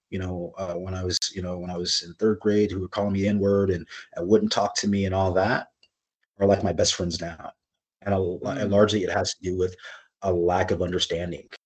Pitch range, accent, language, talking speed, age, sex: 90-105 Hz, American, English, 240 wpm, 30-49, male